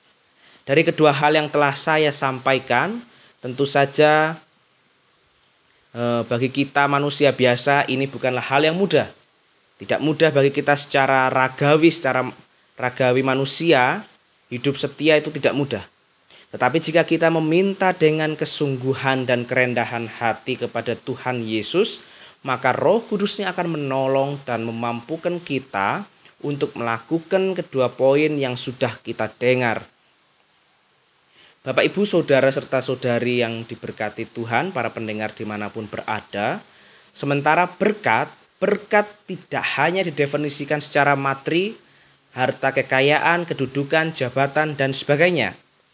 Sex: male